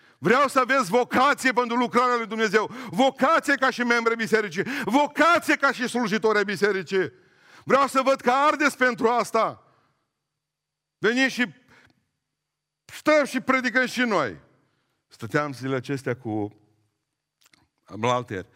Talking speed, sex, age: 125 wpm, male, 50-69